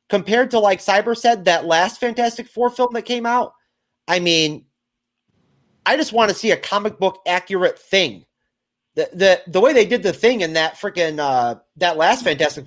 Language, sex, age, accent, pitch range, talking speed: English, male, 30-49, American, 145-215 Hz, 190 wpm